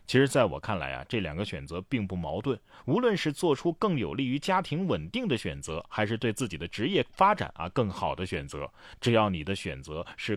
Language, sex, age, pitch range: Chinese, male, 30-49, 90-130 Hz